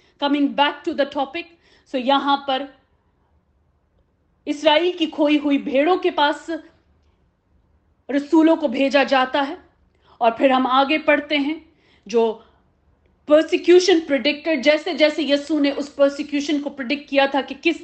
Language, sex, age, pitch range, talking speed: English, female, 40-59, 260-315 Hz, 135 wpm